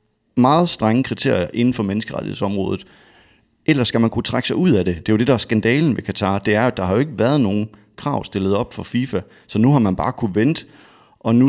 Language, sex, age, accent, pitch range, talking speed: English, male, 30-49, Danish, 105-120 Hz, 245 wpm